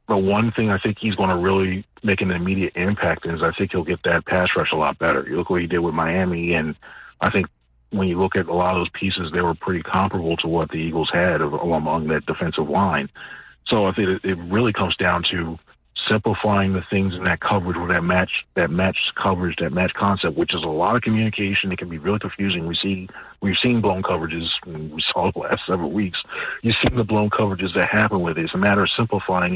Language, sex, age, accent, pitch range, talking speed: English, male, 40-59, American, 85-105 Hz, 235 wpm